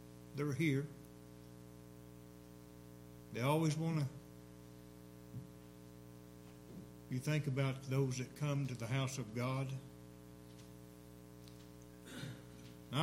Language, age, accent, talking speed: English, 60-79, American, 85 wpm